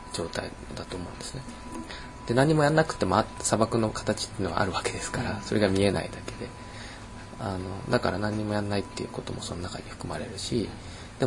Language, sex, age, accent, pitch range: Japanese, male, 20-39, native, 95-125 Hz